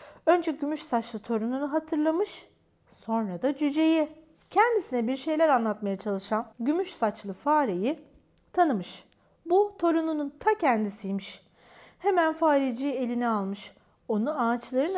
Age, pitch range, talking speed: 40-59, 225-315 Hz, 110 wpm